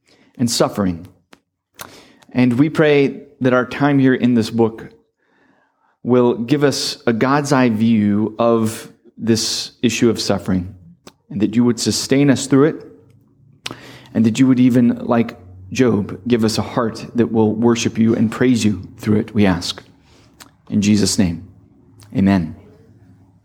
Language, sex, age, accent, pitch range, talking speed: English, male, 30-49, American, 110-170 Hz, 150 wpm